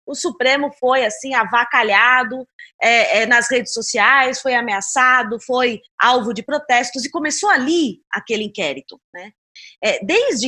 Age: 20-39